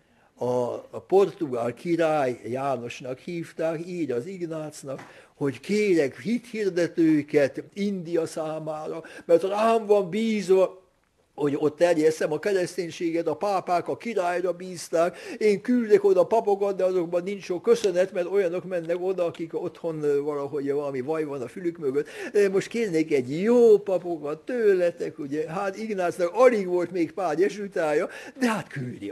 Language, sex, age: Hungarian, male, 60-79